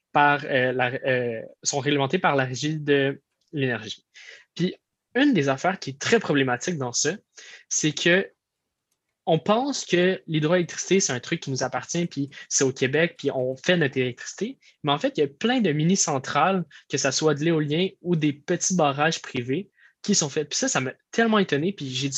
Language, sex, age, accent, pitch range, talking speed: French, male, 20-39, Canadian, 135-180 Hz, 190 wpm